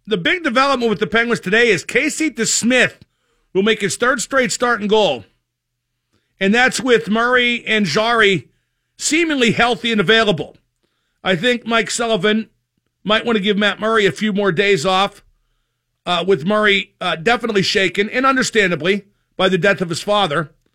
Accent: American